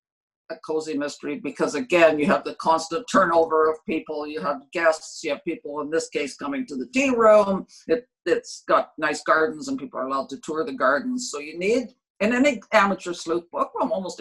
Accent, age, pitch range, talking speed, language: American, 50-69, 160-230 Hz, 205 wpm, English